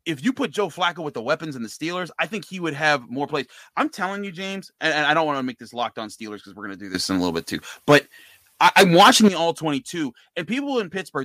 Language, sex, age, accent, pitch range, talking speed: English, male, 30-49, American, 125-185 Hz, 285 wpm